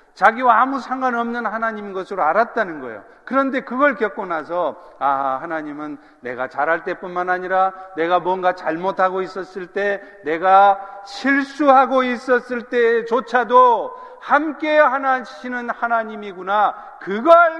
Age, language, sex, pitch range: 50-69, Korean, male, 135-225 Hz